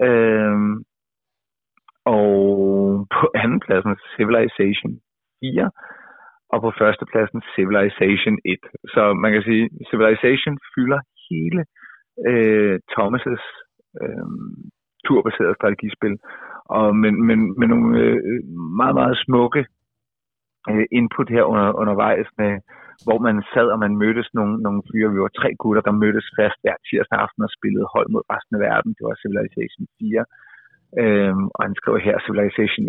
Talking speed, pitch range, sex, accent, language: 135 wpm, 105-115 Hz, male, native, Danish